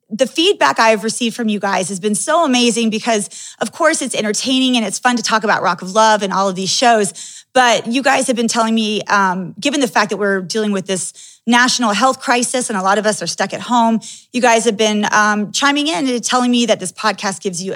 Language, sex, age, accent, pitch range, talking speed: English, female, 30-49, American, 210-255 Hz, 245 wpm